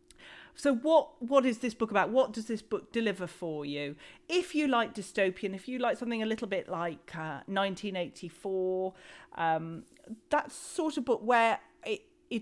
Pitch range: 185-240 Hz